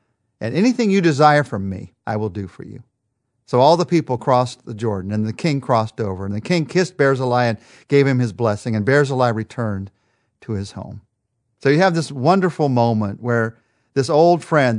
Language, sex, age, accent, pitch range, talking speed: English, male, 50-69, American, 110-145 Hz, 200 wpm